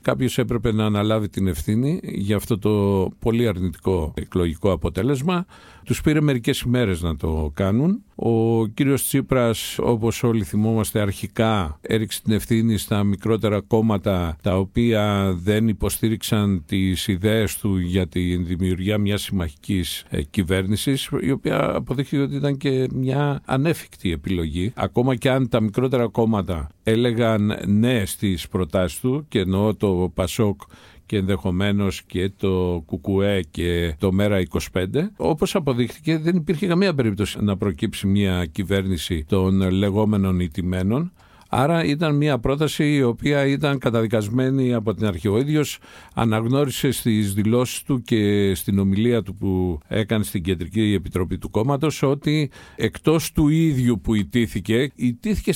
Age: 50-69